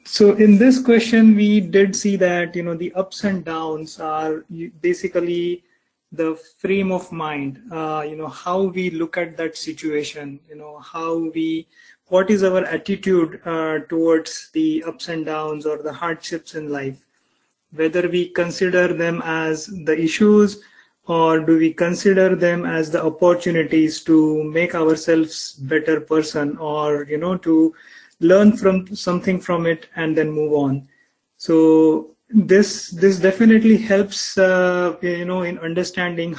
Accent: Indian